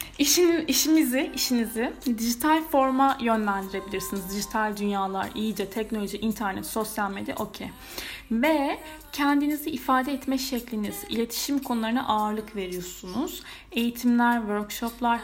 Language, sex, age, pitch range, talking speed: Turkish, female, 10-29, 205-270 Hz, 100 wpm